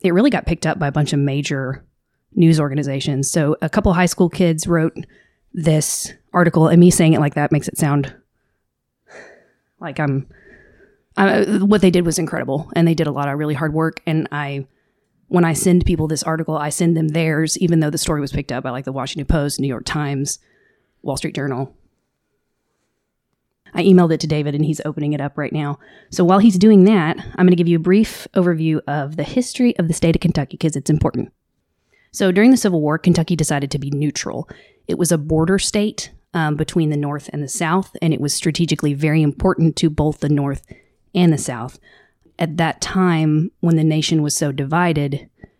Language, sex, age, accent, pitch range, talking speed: English, female, 30-49, American, 145-175 Hz, 205 wpm